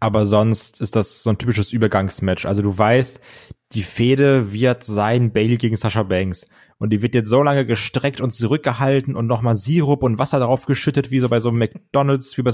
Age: 20-39